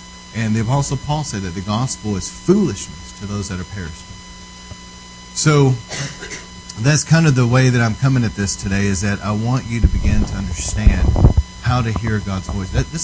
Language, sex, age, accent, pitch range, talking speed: English, male, 40-59, American, 90-115 Hz, 200 wpm